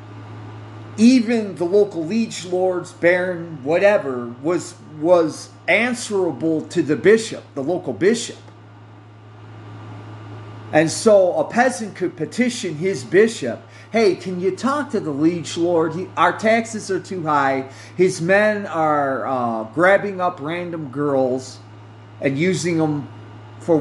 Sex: male